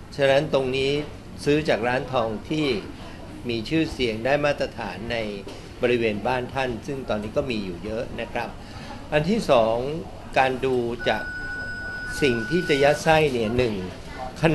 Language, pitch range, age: Thai, 110-155 Hz, 60-79